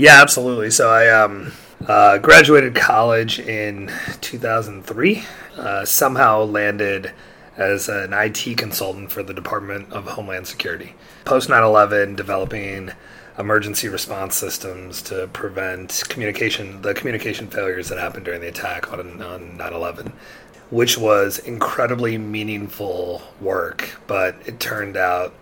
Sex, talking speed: male, 125 wpm